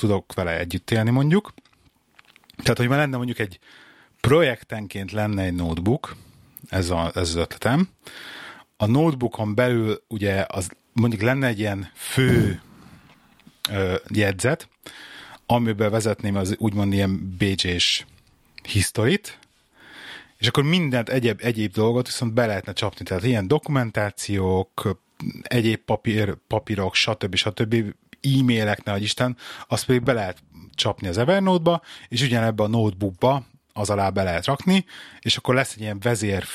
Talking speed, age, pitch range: 135 wpm, 30-49, 100-125 Hz